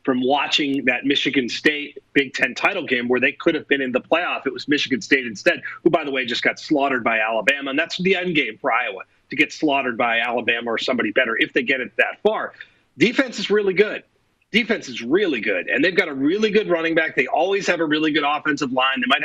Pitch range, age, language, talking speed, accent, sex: 140-220 Hz, 30-49, English, 245 wpm, American, male